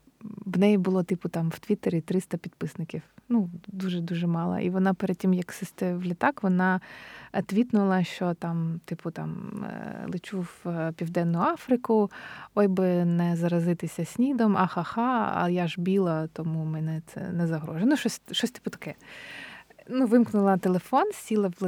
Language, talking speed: Ukrainian, 150 wpm